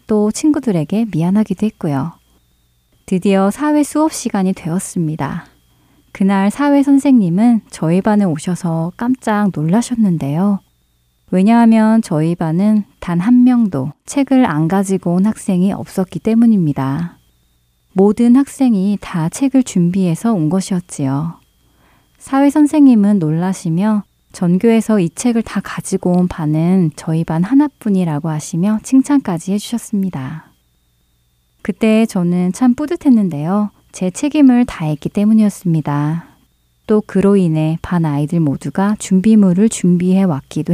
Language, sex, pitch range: Korean, female, 155-215 Hz